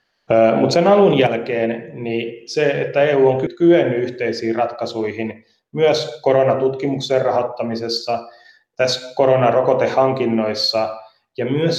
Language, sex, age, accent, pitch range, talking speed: Finnish, male, 30-49, native, 110-130 Hz, 95 wpm